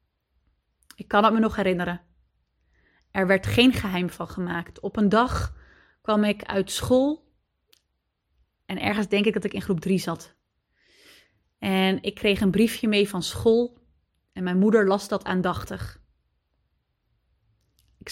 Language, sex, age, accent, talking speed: Dutch, female, 30-49, Dutch, 145 wpm